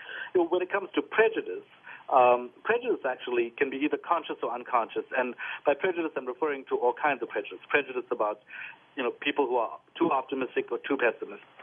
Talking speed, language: 185 wpm, English